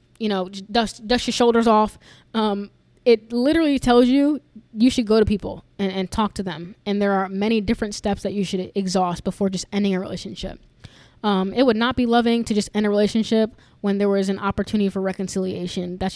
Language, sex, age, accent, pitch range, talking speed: English, female, 10-29, American, 190-225 Hz, 210 wpm